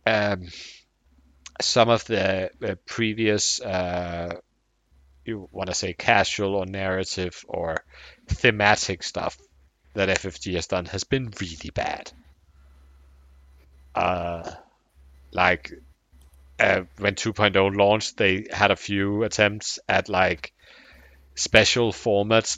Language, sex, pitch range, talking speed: English, male, 80-115 Hz, 105 wpm